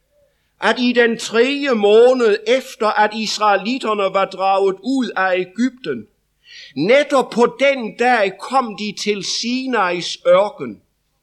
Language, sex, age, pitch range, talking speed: English, male, 60-79, 205-255 Hz, 120 wpm